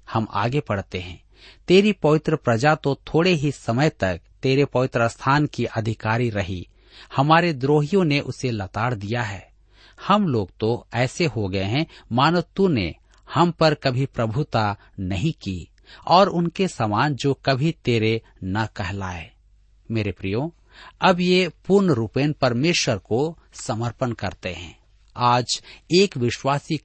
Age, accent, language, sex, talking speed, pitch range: 50-69, native, Hindi, male, 140 wpm, 105-150 Hz